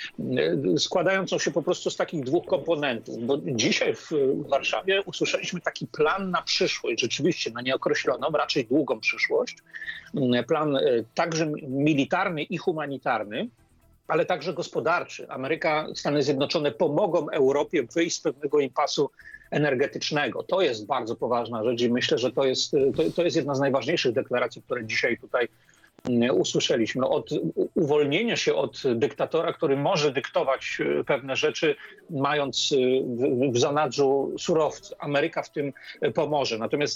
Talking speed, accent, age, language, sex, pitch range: 130 wpm, native, 40-59, Polish, male, 140-195 Hz